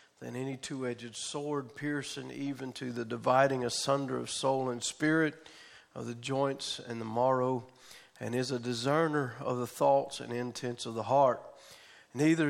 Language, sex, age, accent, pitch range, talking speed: English, male, 40-59, American, 120-145 Hz, 160 wpm